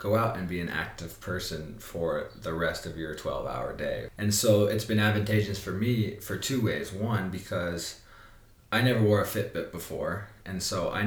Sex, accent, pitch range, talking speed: male, American, 90-110 Hz, 190 wpm